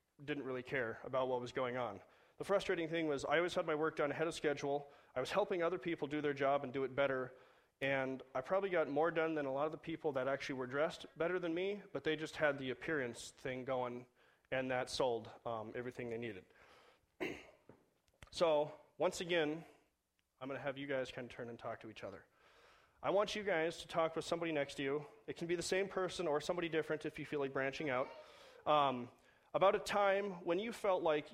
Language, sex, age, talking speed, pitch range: English, male, 30-49, 225 wpm, 130-165 Hz